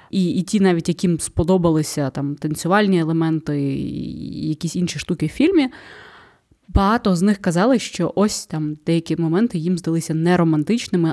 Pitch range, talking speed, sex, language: 170-200 Hz, 145 wpm, female, Ukrainian